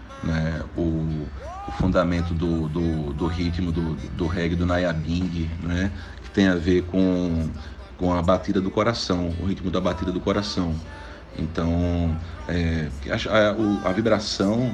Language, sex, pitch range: Portuguese, male, 80-95 Hz